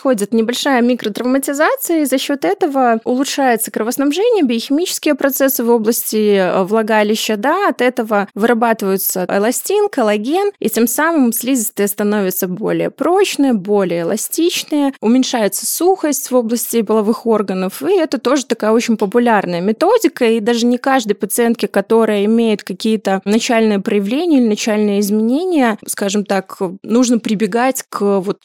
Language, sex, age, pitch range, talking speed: Russian, female, 20-39, 205-255 Hz, 125 wpm